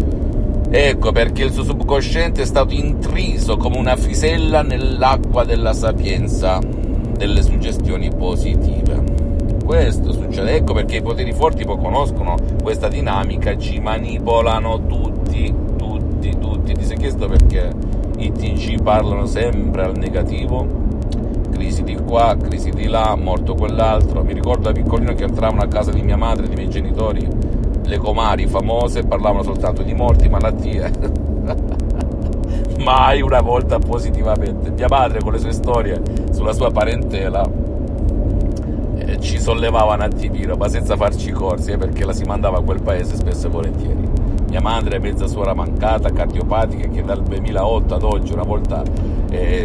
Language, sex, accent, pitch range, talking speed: Italian, male, native, 80-105 Hz, 145 wpm